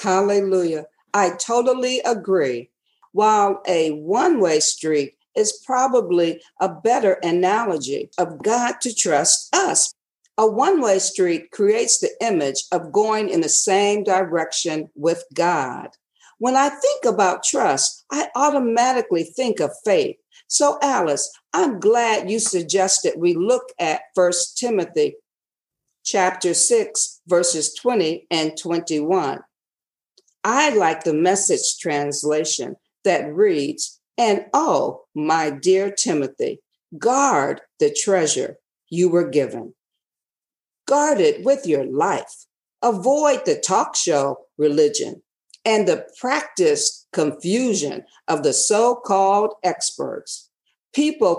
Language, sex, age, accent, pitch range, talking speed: English, female, 50-69, American, 175-285 Hz, 110 wpm